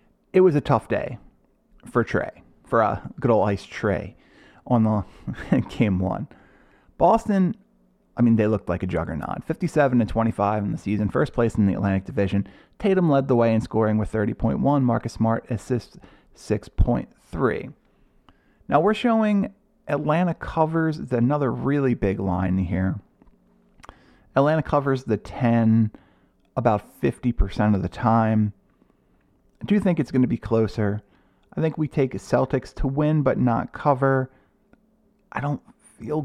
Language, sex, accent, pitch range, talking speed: English, male, American, 105-155 Hz, 145 wpm